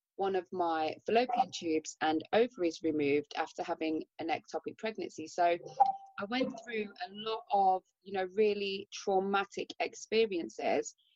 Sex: female